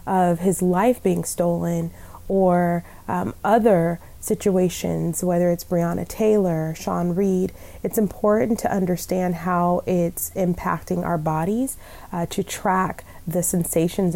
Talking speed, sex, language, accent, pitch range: 125 wpm, female, English, American, 165-185 Hz